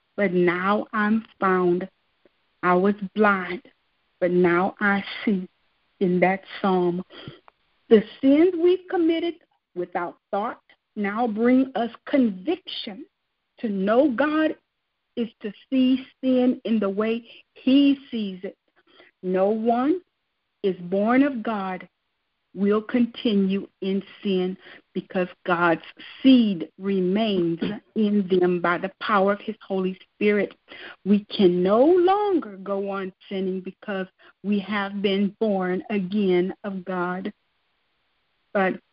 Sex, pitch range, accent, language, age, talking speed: female, 190-240 Hz, American, English, 50-69, 115 wpm